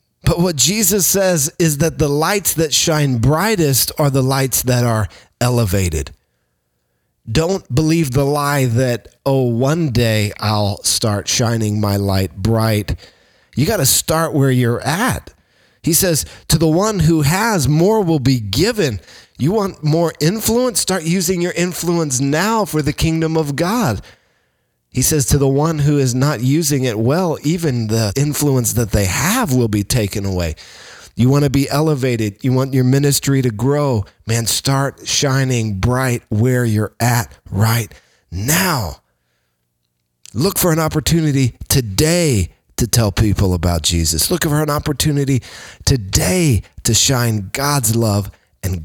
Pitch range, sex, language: 110-155 Hz, male, English